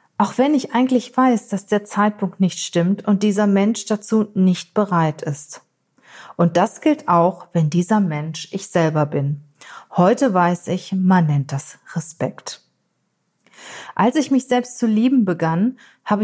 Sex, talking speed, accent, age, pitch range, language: female, 155 wpm, German, 40-59, 165-220 Hz, German